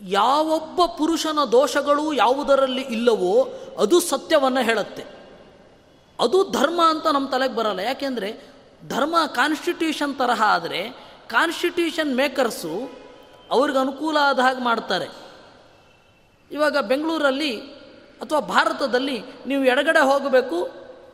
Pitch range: 250-320 Hz